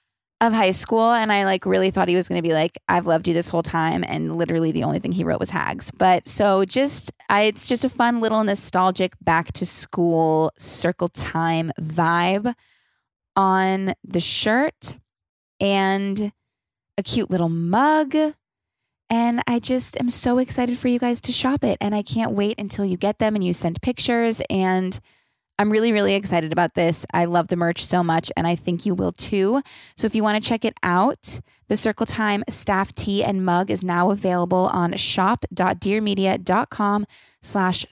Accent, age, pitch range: American, 20-39, 185-230 Hz